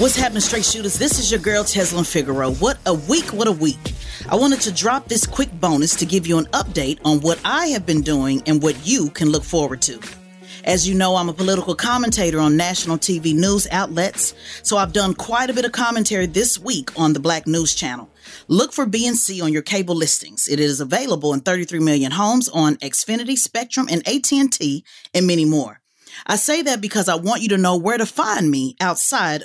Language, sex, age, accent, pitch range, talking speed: English, female, 30-49, American, 150-210 Hz, 215 wpm